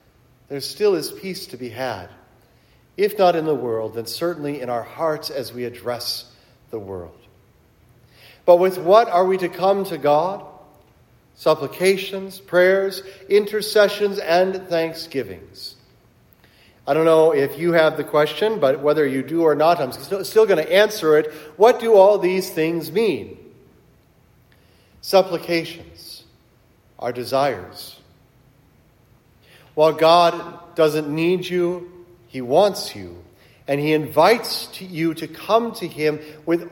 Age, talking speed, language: 40-59, 135 wpm, English